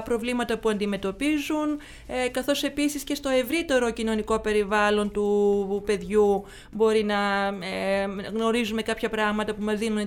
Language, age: Greek, 30-49